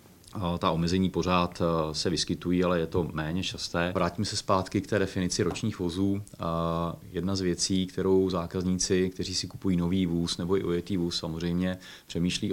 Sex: male